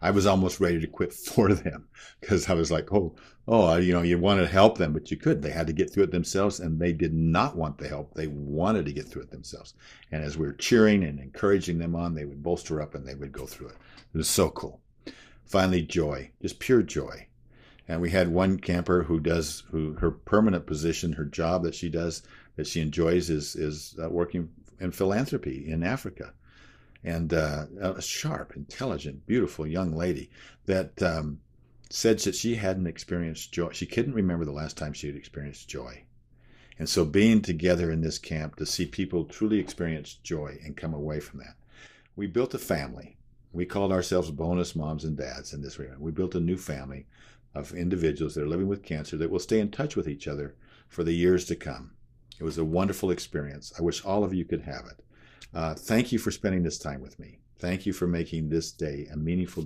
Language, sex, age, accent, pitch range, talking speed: English, male, 50-69, American, 75-90 Hz, 215 wpm